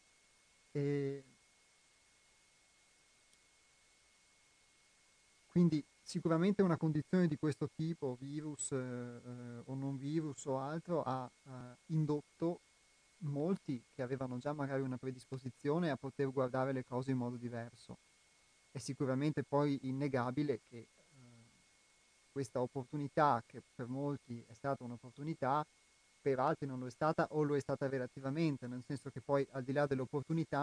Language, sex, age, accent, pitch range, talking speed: Italian, male, 30-49, native, 125-145 Hz, 125 wpm